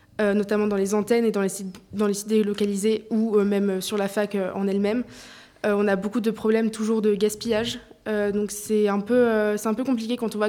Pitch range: 205-235 Hz